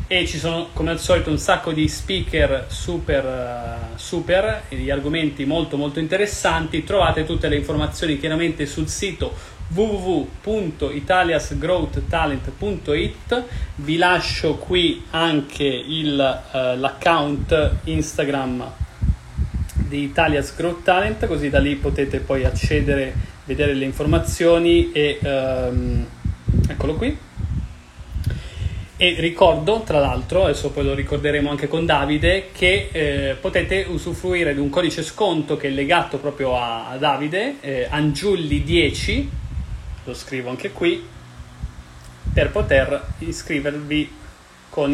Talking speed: 110 wpm